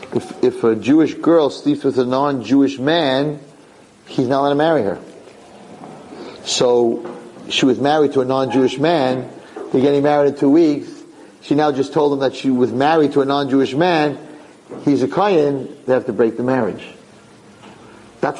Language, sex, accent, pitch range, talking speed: English, male, American, 130-180 Hz, 175 wpm